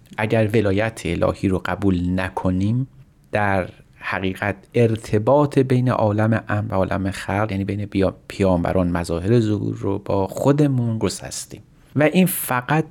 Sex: male